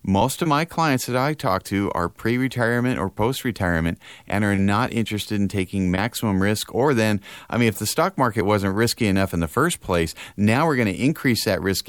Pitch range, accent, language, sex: 90-115 Hz, American, English, male